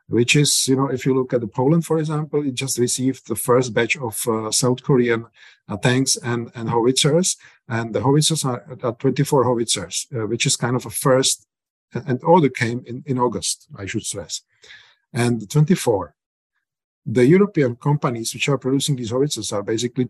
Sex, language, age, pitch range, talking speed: male, English, 50-69, 115-135 Hz, 185 wpm